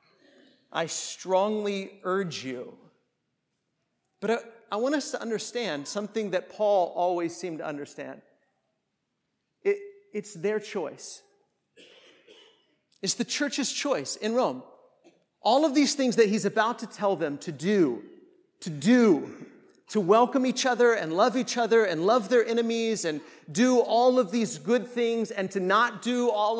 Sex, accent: male, American